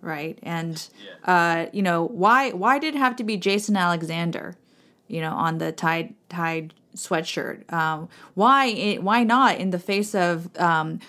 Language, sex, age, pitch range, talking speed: English, female, 20-39, 170-215 Hz, 160 wpm